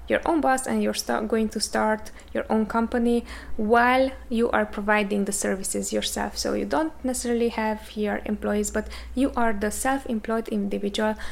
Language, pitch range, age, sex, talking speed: English, 205-240 Hz, 20-39, female, 170 wpm